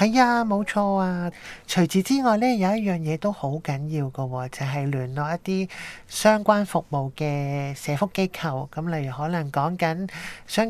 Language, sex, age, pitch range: Chinese, male, 20-39, 150-200 Hz